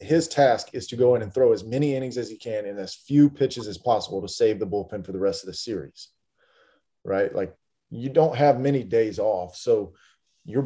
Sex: male